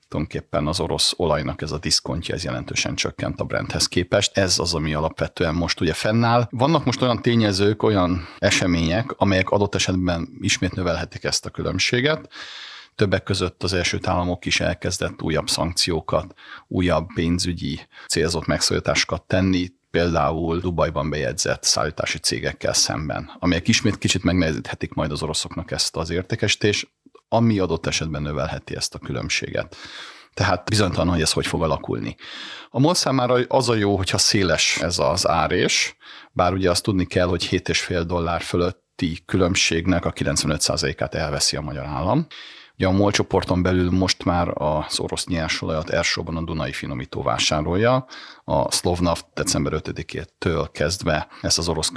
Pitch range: 85-100 Hz